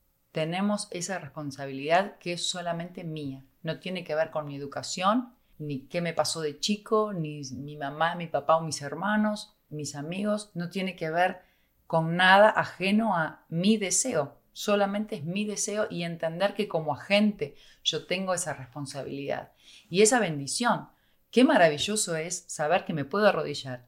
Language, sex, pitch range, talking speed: Spanish, female, 145-190 Hz, 160 wpm